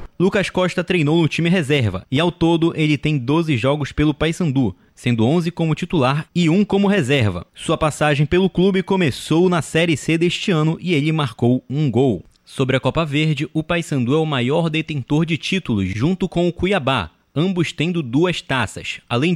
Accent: Brazilian